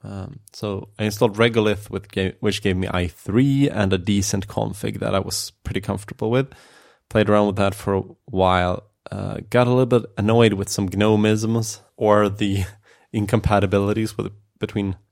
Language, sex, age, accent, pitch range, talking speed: English, male, 20-39, Norwegian, 95-110 Hz, 165 wpm